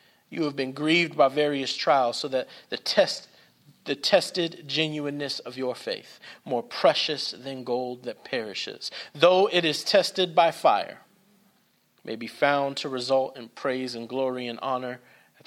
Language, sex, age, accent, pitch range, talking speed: English, male, 40-59, American, 120-150 Hz, 160 wpm